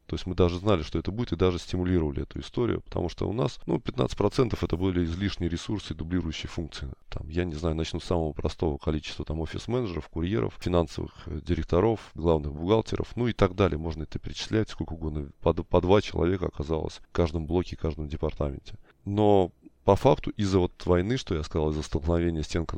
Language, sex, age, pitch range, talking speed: Russian, male, 20-39, 80-100 Hz, 185 wpm